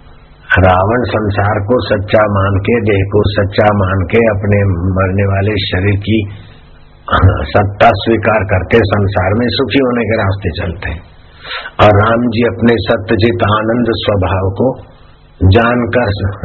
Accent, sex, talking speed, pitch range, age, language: native, male, 125 wpm, 95-115 Hz, 60-79, Hindi